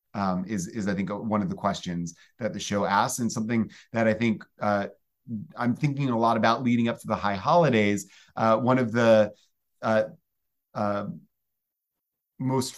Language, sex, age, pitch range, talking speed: English, male, 30-49, 110-130 Hz, 175 wpm